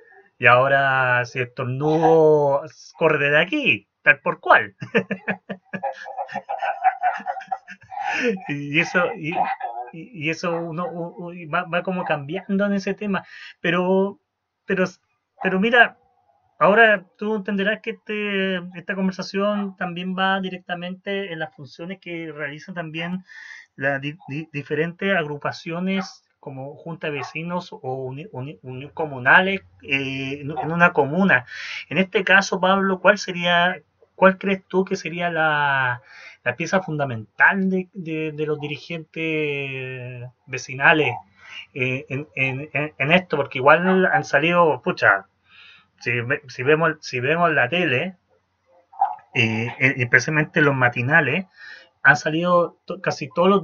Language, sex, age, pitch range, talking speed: Spanish, male, 30-49, 145-195 Hz, 125 wpm